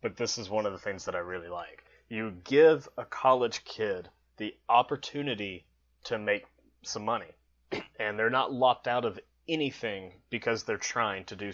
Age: 20-39